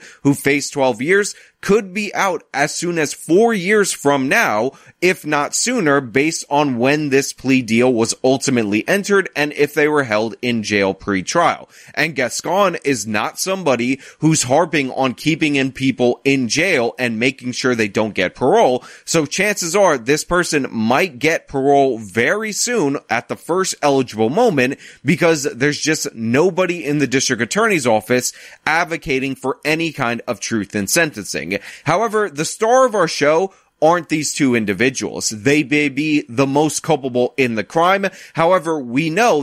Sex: male